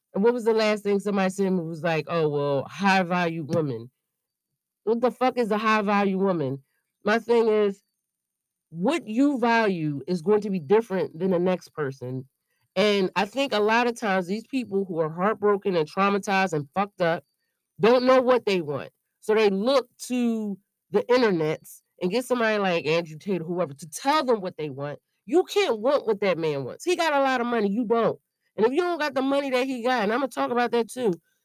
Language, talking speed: English, 220 wpm